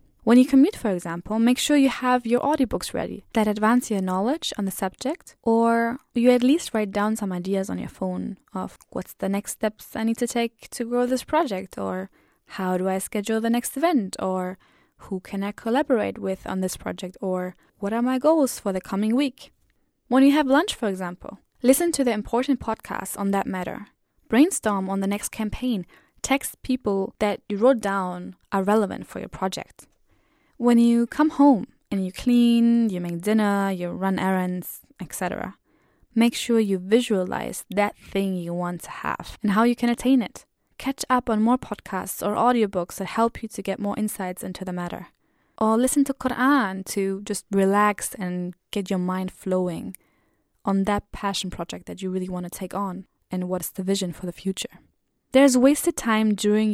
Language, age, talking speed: English, 10-29, 190 wpm